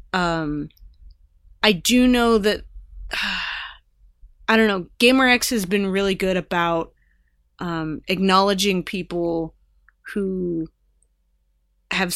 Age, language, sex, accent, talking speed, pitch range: 20-39, English, female, American, 105 wpm, 155-190 Hz